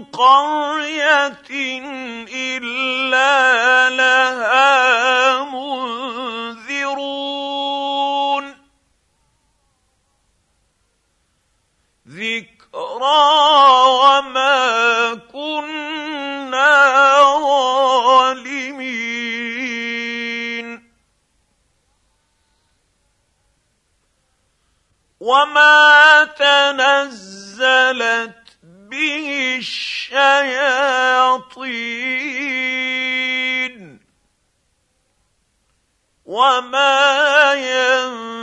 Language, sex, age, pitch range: English, male, 50-69, 225-275 Hz